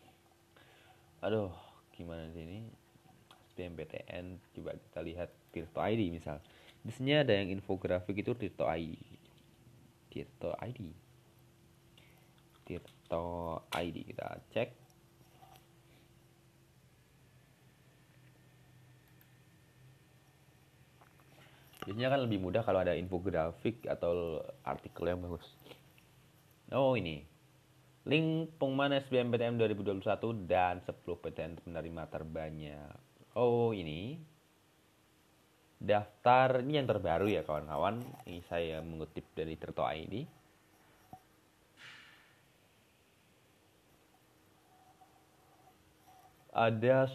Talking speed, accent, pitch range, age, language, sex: 75 wpm, native, 85-130 Hz, 30-49, Indonesian, male